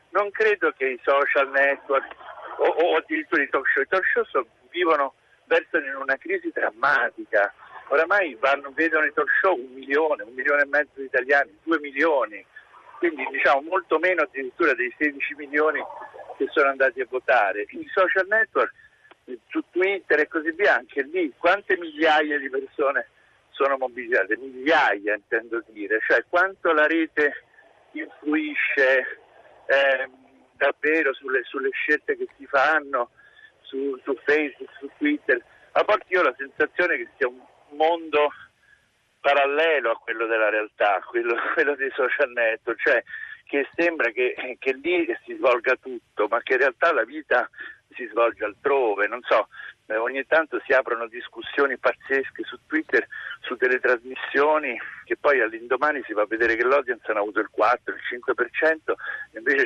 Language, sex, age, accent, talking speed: Italian, male, 50-69, native, 155 wpm